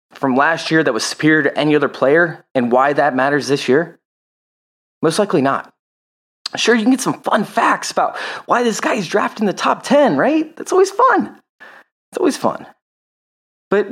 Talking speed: 185 wpm